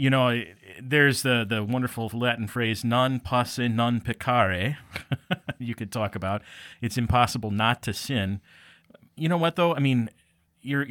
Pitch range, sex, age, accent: 105-130 Hz, male, 30-49, American